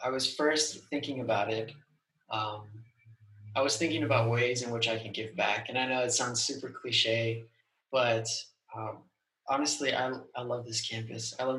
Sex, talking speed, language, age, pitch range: male, 180 wpm, English, 20-39, 115-145 Hz